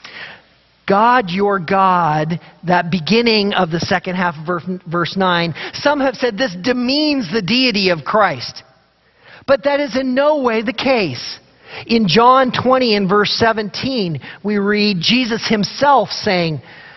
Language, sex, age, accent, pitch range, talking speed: English, male, 40-59, American, 175-235 Hz, 140 wpm